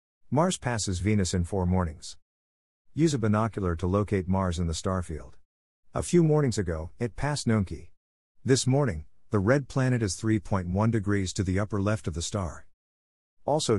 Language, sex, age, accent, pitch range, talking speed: English, male, 50-69, American, 85-120 Hz, 165 wpm